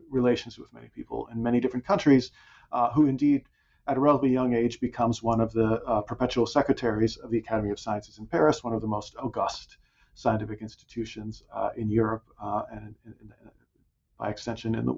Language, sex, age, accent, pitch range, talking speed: English, male, 40-59, American, 115-135 Hz, 190 wpm